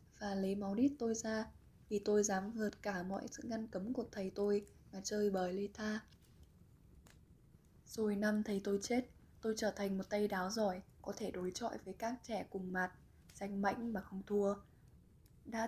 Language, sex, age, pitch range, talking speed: Vietnamese, female, 10-29, 185-225 Hz, 190 wpm